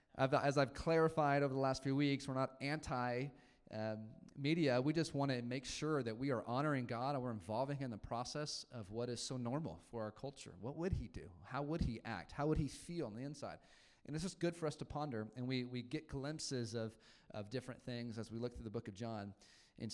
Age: 30-49